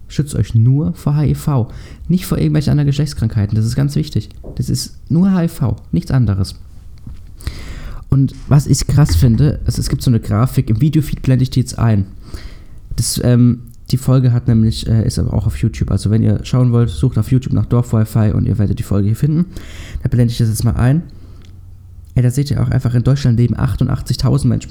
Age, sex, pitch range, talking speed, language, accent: 20-39, male, 100-130 Hz, 205 wpm, German, German